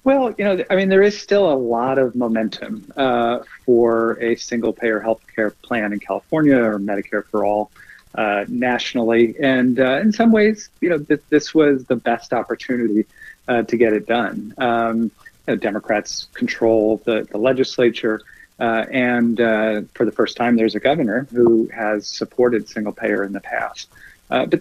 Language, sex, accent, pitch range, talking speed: English, male, American, 110-125 Hz, 180 wpm